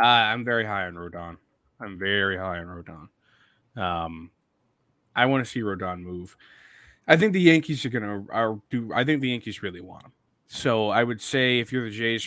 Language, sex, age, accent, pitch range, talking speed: English, male, 20-39, American, 105-140 Hz, 200 wpm